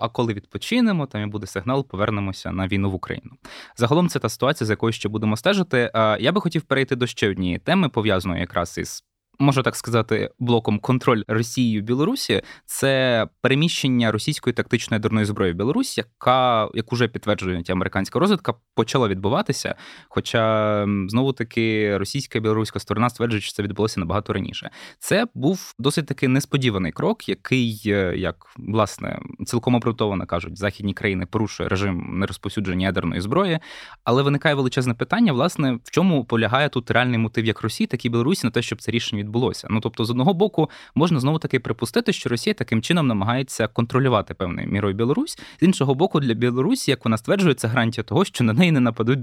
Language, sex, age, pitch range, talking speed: Ukrainian, male, 20-39, 105-130 Hz, 175 wpm